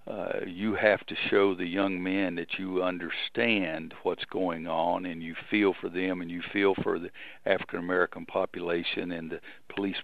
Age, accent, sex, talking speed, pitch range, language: 50-69, American, male, 175 wpm, 90-100 Hz, English